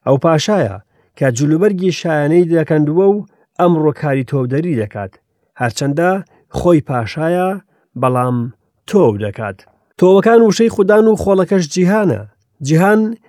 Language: English